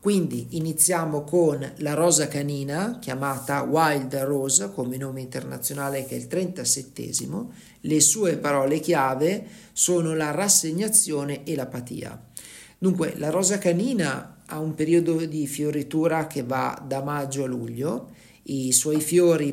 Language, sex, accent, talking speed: Italian, male, native, 130 wpm